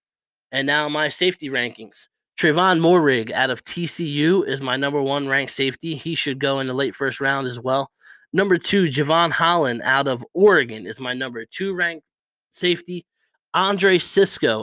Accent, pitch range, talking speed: American, 125-150 Hz, 170 wpm